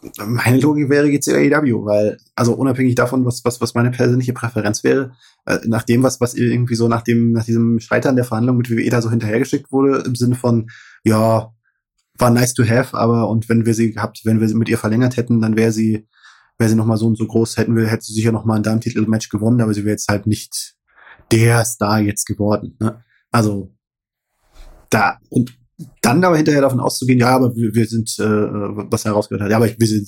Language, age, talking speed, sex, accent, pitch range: German, 20-39, 220 wpm, male, German, 110-125 Hz